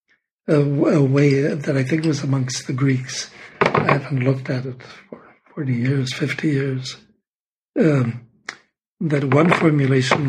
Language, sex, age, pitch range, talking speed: English, male, 60-79, 130-155 Hz, 135 wpm